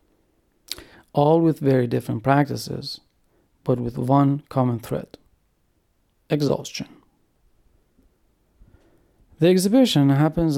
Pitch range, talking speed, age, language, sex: 120-150 Hz, 80 wpm, 40-59, English, male